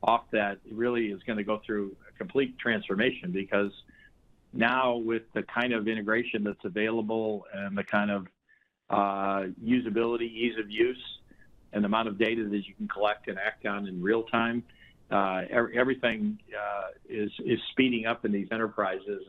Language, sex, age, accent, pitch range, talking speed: English, male, 50-69, American, 105-120 Hz, 170 wpm